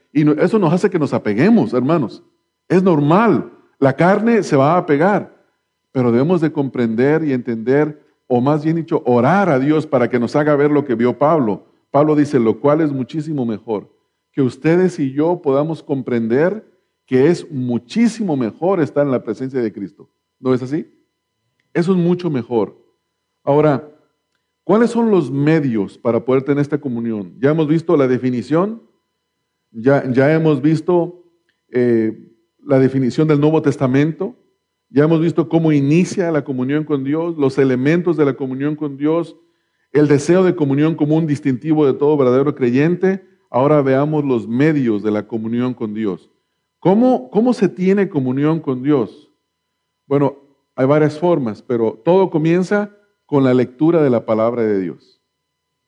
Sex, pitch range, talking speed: male, 130-165 Hz, 160 wpm